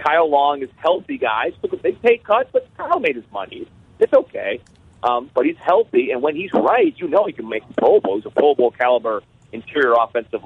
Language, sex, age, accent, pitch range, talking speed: English, male, 40-59, American, 115-165 Hz, 205 wpm